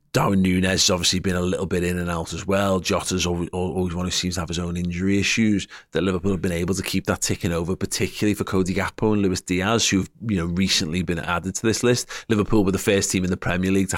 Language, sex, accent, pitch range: English, male, British, 90-115 Hz